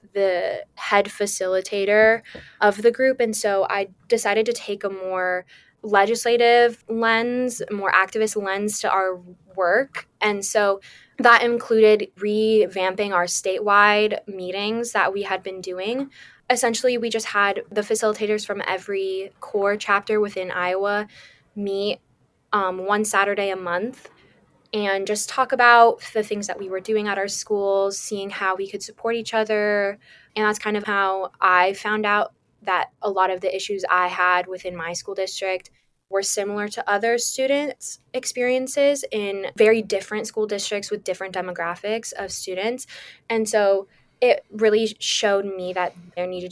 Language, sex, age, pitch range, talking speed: English, female, 10-29, 190-220 Hz, 150 wpm